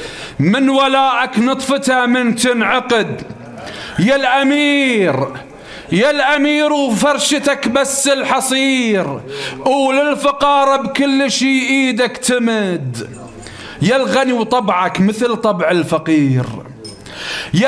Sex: male